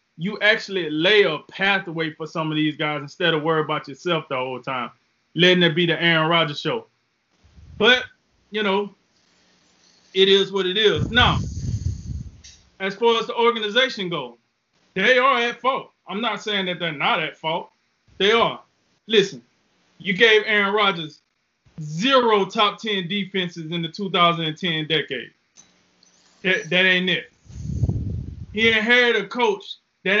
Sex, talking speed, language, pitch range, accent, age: male, 150 wpm, English, 170-220 Hz, American, 20-39